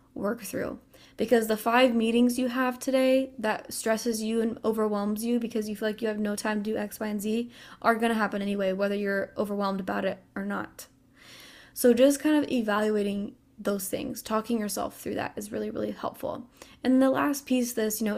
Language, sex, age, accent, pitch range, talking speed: English, female, 10-29, American, 210-250 Hz, 205 wpm